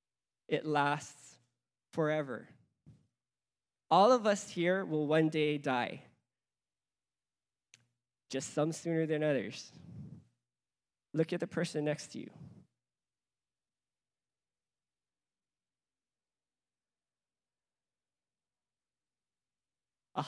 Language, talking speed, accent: English, 70 wpm, American